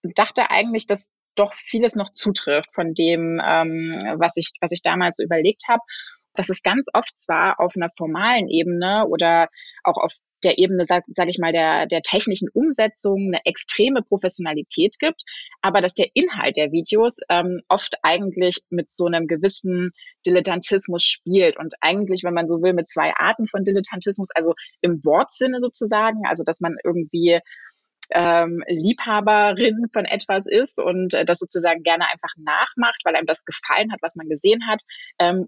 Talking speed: 170 wpm